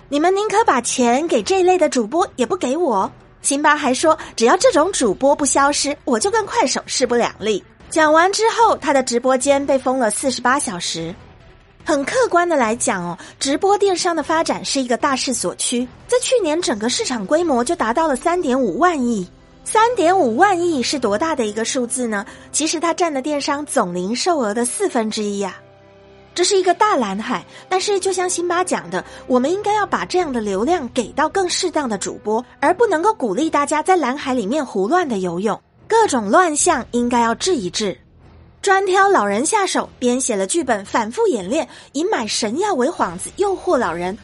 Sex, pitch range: female, 235-355 Hz